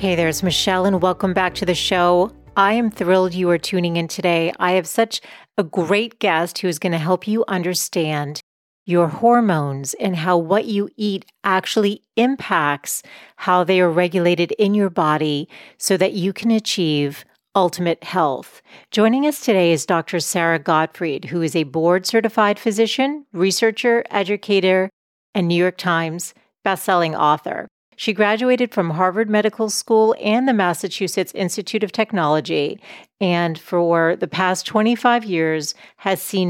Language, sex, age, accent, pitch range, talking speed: English, female, 40-59, American, 170-205 Hz, 155 wpm